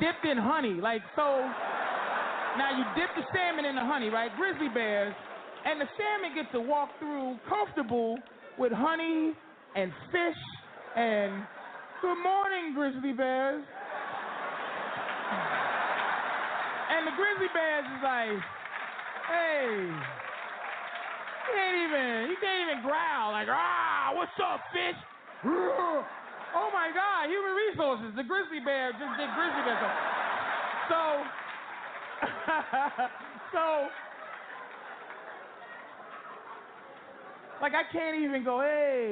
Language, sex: English, male